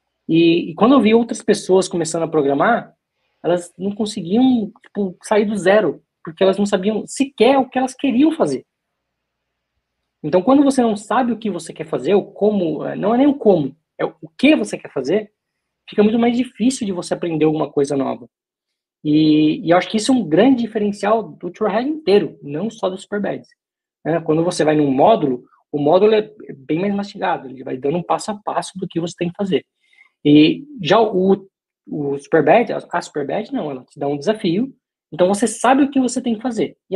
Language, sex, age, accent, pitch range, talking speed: Portuguese, male, 20-39, Brazilian, 160-215 Hz, 205 wpm